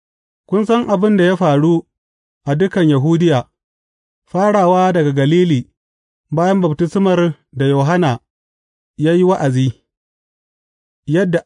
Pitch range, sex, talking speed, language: 130-185 Hz, male, 95 wpm, English